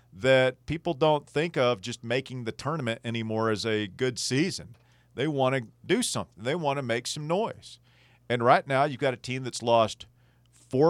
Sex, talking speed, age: male, 195 wpm, 40-59